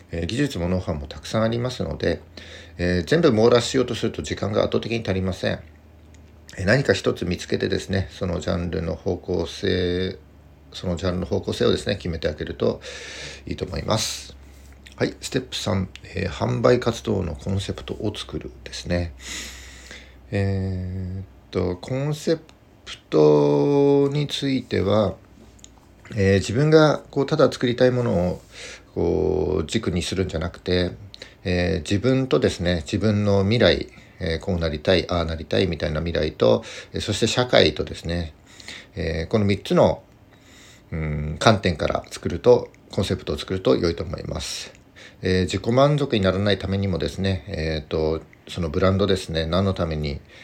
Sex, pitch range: male, 80-105 Hz